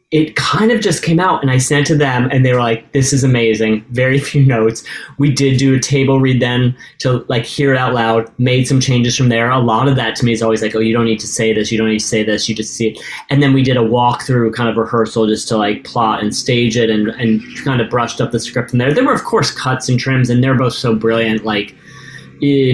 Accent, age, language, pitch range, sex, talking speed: American, 30-49, English, 115-145 Hz, male, 275 wpm